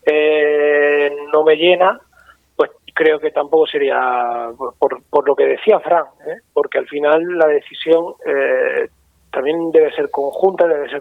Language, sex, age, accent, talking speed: Spanish, male, 30-49, Spanish, 160 wpm